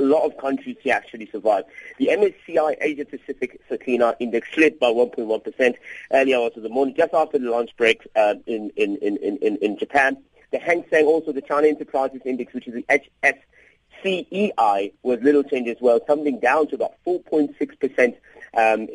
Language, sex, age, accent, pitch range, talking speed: English, male, 30-49, British, 125-165 Hz, 175 wpm